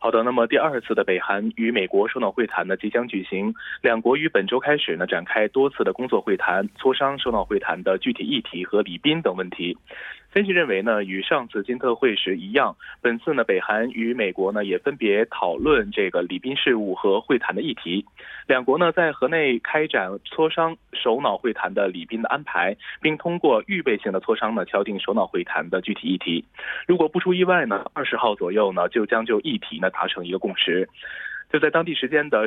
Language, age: Korean, 20-39